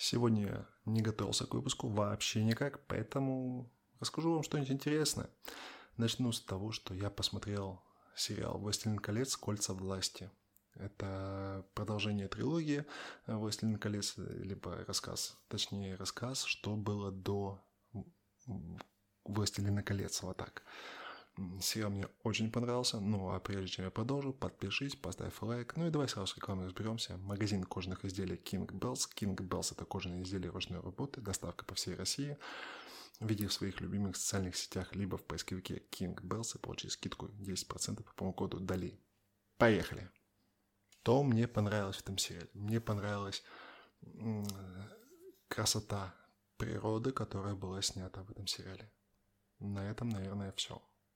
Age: 20-39